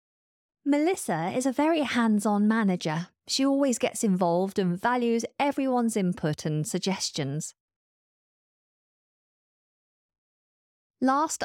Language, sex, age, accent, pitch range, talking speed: English, female, 30-49, British, 165-220 Hz, 90 wpm